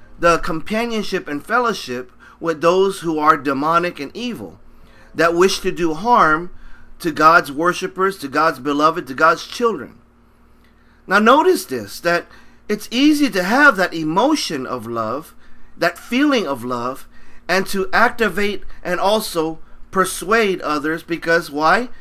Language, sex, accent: Japanese, male, American